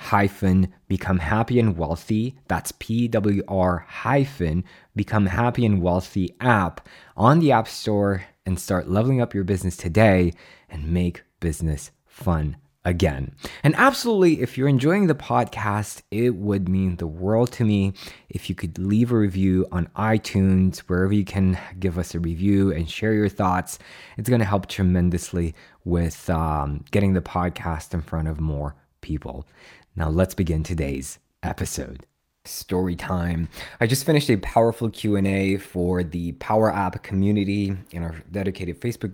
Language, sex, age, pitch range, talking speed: English, male, 20-39, 85-110 Hz, 155 wpm